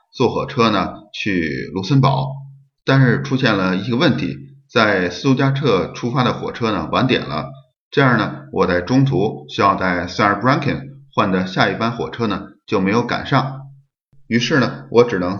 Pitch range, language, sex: 100-135 Hz, Chinese, male